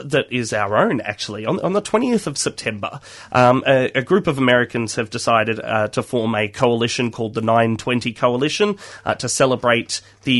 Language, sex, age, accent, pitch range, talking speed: English, male, 30-49, Australian, 110-130 Hz, 185 wpm